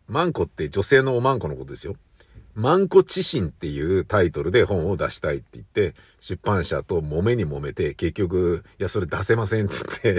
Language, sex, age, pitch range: Japanese, male, 50-69, 105-170 Hz